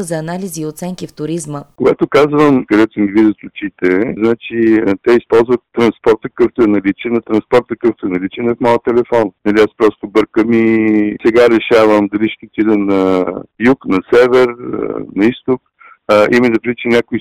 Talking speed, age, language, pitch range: 165 wpm, 50-69, Bulgarian, 105-125 Hz